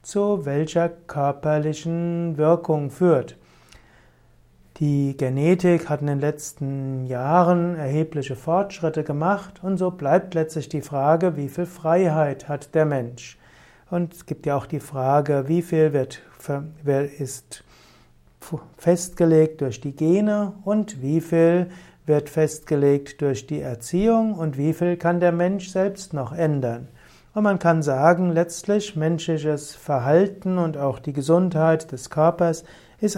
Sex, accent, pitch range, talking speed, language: male, German, 140-175 Hz, 130 wpm, German